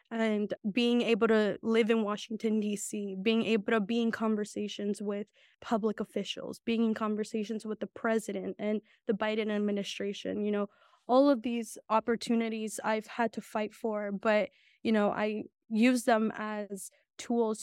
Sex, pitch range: female, 210-230 Hz